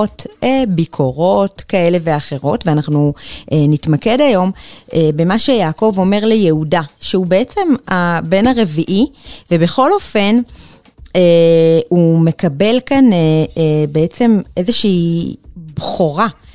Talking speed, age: 80 wpm, 30-49